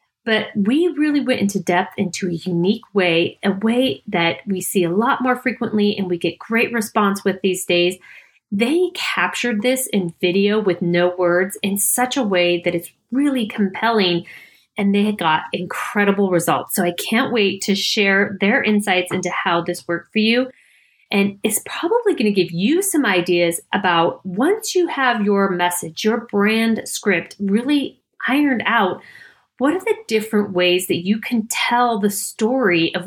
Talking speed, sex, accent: 175 wpm, female, American